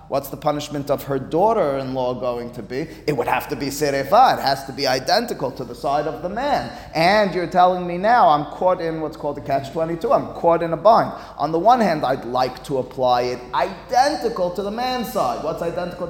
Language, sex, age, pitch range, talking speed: English, male, 30-49, 135-180 Hz, 220 wpm